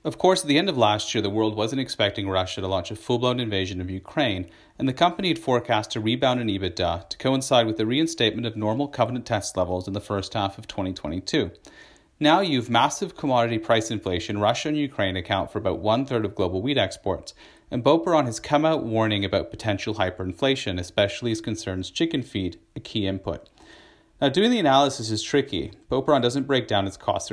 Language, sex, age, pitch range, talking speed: English, male, 30-49, 100-130 Hz, 205 wpm